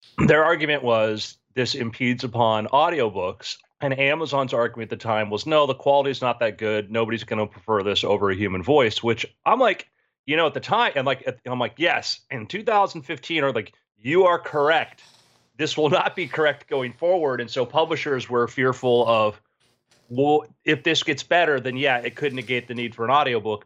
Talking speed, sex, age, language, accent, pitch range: 200 wpm, male, 30-49, English, American, 115-150 Hz